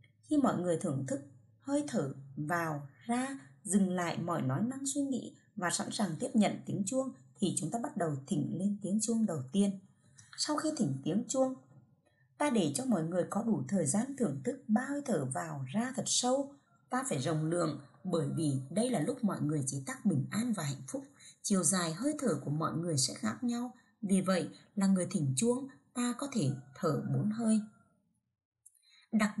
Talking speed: 200 wpm